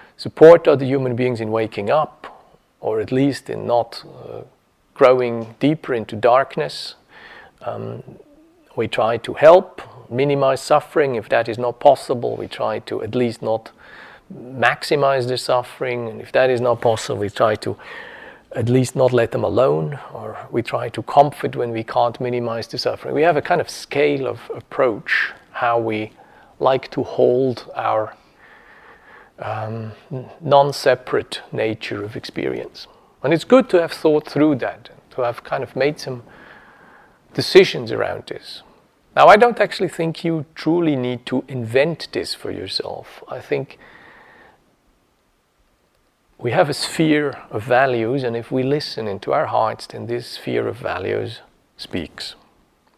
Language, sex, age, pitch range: English, male, 40-59, 120-145 Hz